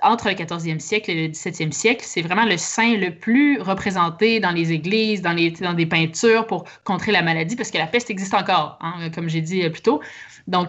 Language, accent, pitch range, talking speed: French, Canadian, 170-215 Hz, 225 wpm